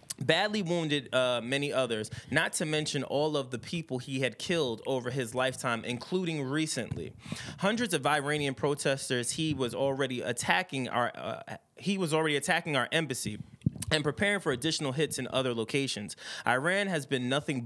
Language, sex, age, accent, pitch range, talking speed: English, male, 20-39, American, 125-155 Hz, 165 wpm